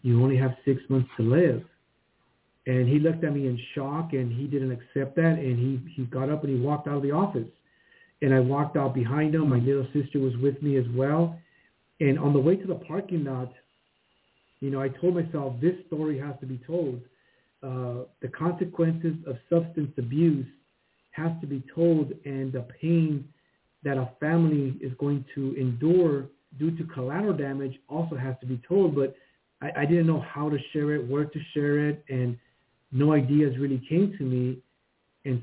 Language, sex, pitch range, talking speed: English, male, 130-155 Hz, 190 wpm